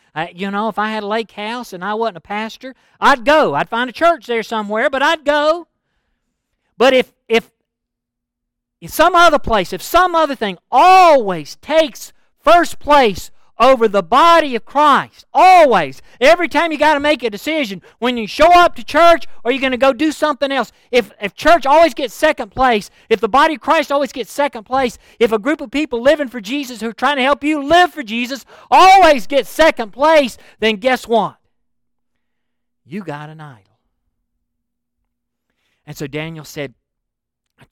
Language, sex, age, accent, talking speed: English, male, 50-69, American, 185 wpm